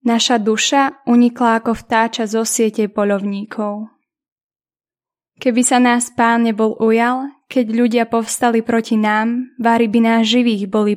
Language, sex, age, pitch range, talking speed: Slovak, female, 10-29, 210-240 Hz, 130 wpm